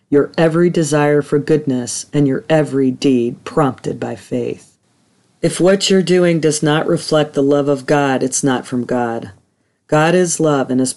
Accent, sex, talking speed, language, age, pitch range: American, female, 175 wpm, English, 40-59, 130-155 Hz